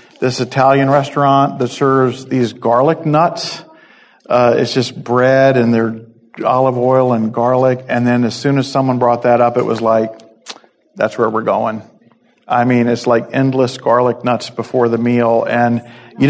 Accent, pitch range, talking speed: American, 120-140 Hz, 170 wpm